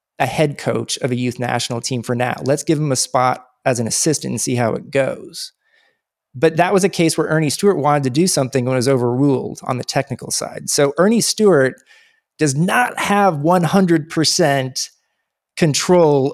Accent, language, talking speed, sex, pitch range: American, English, 185 wpm, male, 130-175 Hz